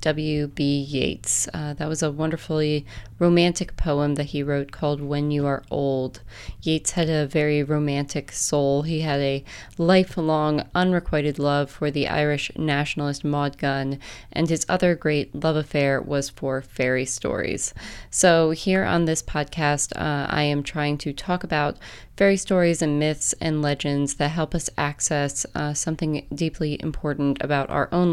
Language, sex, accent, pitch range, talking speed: English, female, American, 140-160 Hz, 160 wpm